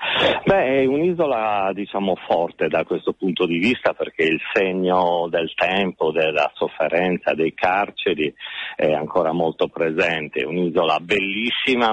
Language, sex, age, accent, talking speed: Italian, male, 40-59, native, 130 wpm